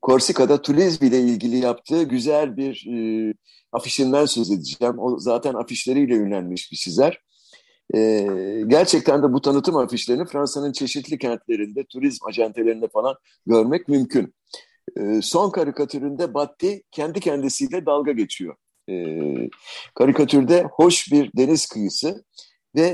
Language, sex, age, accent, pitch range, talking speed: Turkish, male, 60-79, native, 115-145 Hz, 120 wpm